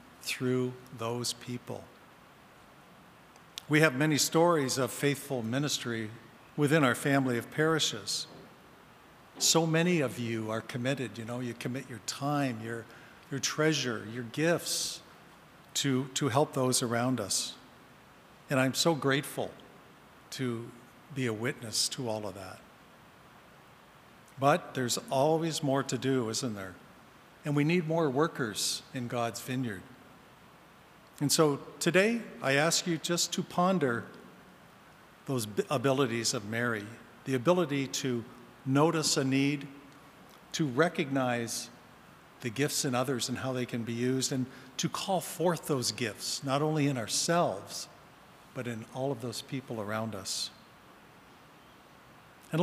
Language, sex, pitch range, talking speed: English, male, 120-155 Hz, 130 wpm